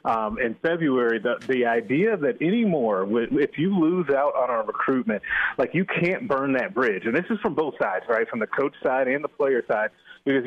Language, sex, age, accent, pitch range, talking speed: English, male, 30-49, American, 120-160 Hz, 210 wpm